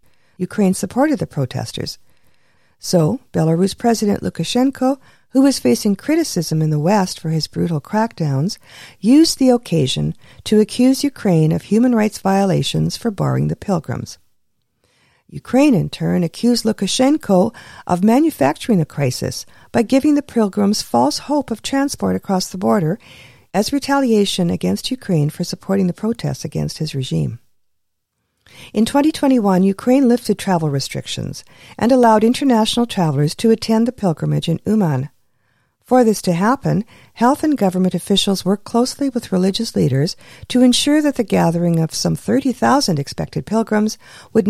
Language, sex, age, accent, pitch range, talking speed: English, female, 50-69, American, 160-235 Hz, 140 wpm